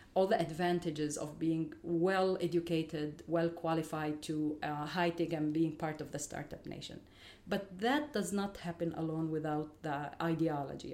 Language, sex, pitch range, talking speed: English, female, 160-195 Hz, 145 wpm